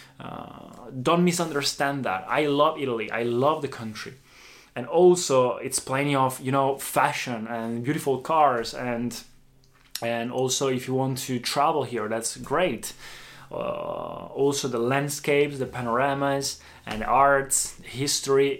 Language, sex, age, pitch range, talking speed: Italian, male, 20-39, 125-155 Hz, 135 wpm